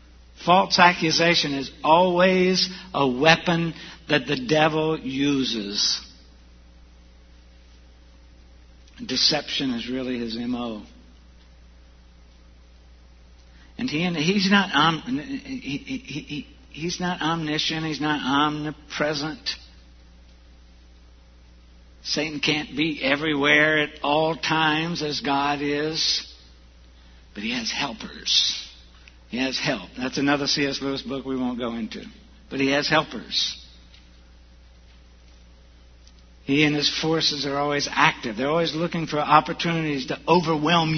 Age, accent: 60-79, American